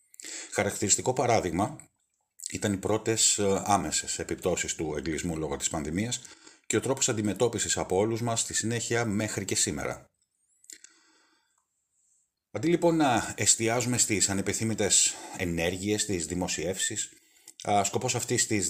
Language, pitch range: Greek, 95-115 Hz